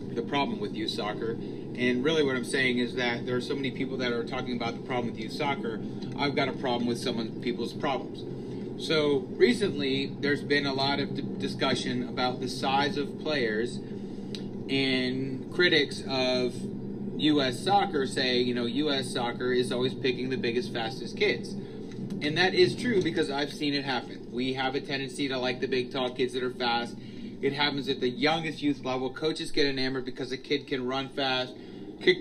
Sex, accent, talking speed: male, American, 190 wpm